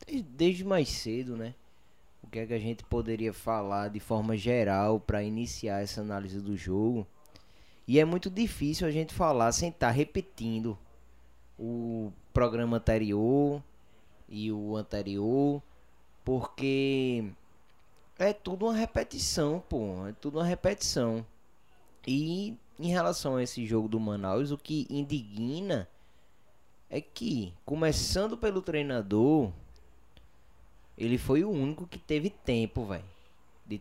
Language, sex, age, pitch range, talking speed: Portuguese, male, 20-39, 100-140 Hz, 130 wpm